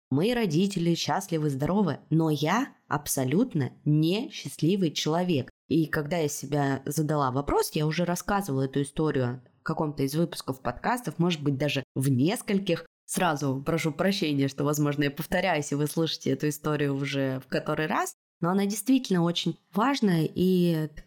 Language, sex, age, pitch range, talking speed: Russian, female, 20-39, 150-195 Hz, 150 wpm